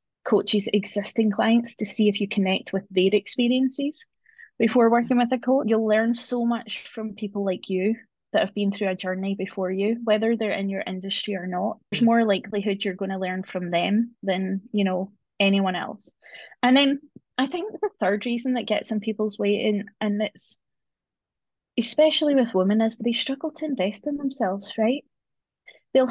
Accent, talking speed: British, 185 wpm